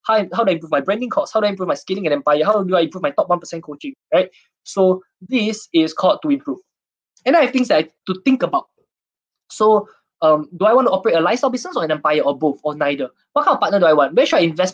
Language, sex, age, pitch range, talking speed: English, male, 20-39, 155-255 Hz, 280 wpm